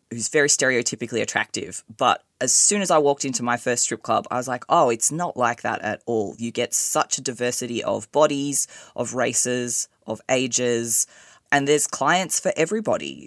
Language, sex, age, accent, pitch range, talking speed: English, female, 20-39, Australian, 120-165 Hz, 185 wpm